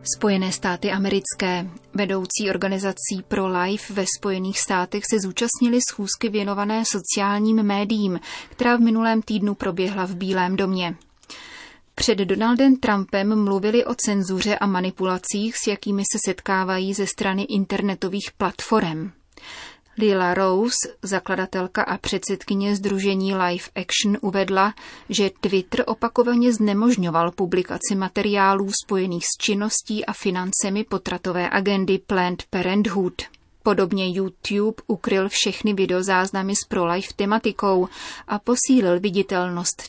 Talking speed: 110 wpm